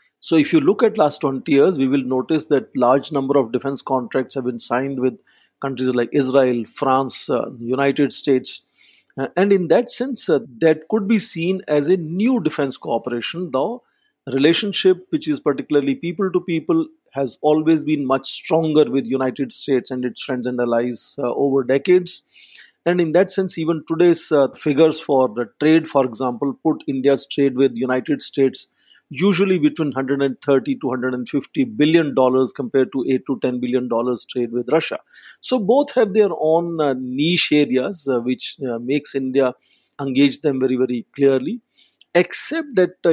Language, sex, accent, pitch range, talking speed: English, male, Indian, 130-170 Hz, 175 wpm